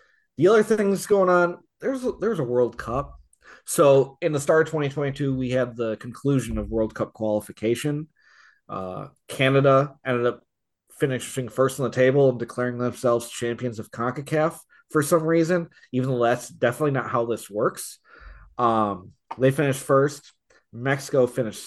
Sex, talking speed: male, 150 wpm